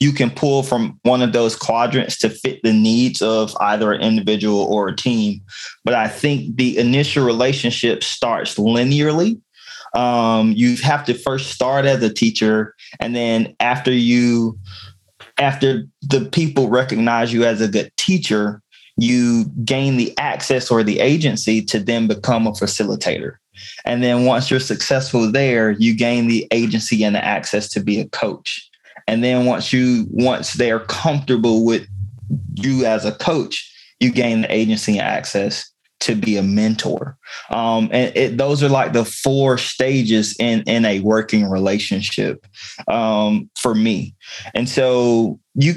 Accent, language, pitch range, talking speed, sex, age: American, English, 110-130 Hz, 160 wpm, male, 20-39